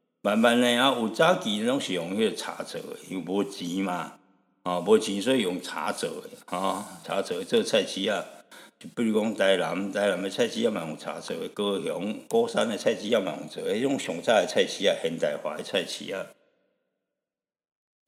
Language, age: Chinese, 60-79